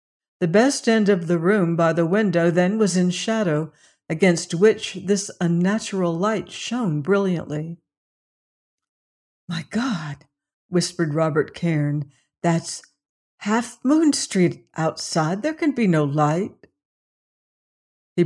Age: 60-79